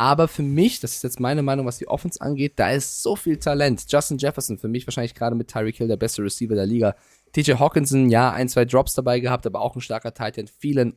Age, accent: 20-39, German